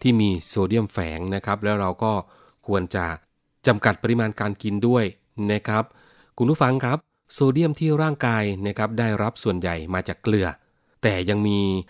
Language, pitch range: Thai, 95-125 Hz